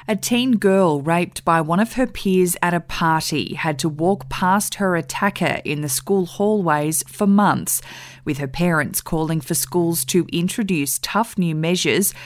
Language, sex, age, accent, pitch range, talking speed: English, female, 20-39, Australian, 160-195 Hz, 170 wpm